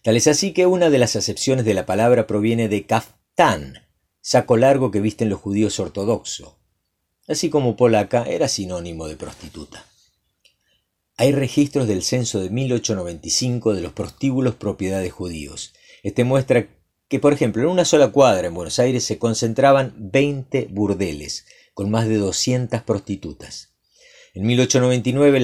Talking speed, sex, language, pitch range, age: 150 wpm, male, Spanish, 105-135 Hz, 50-69